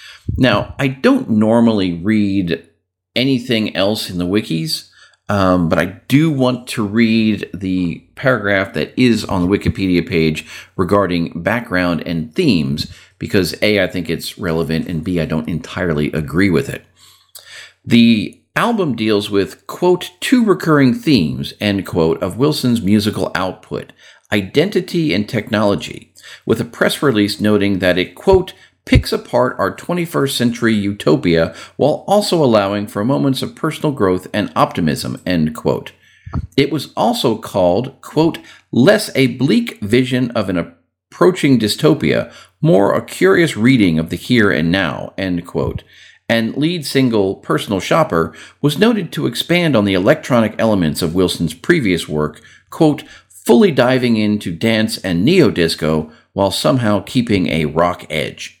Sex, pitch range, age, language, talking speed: male, 90-130 Hz, 50-69, English, 145 wpm